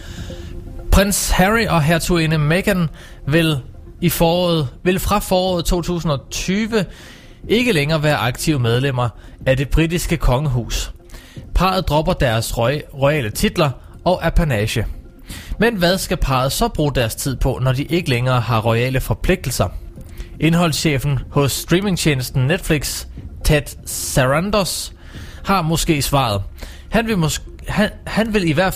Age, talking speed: 20-39, 130 wpm